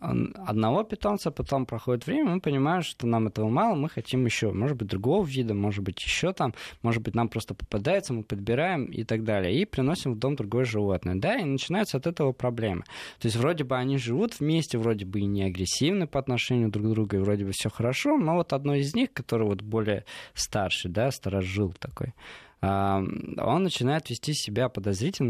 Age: 20-39